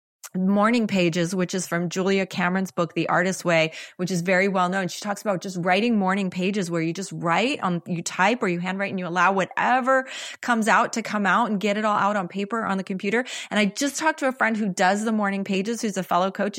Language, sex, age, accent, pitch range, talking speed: English, female, 30-49, American, 180-220 Hz, 250 wpm